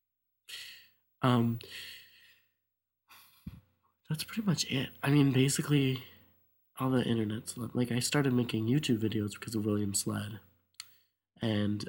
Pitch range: 105-115 Hz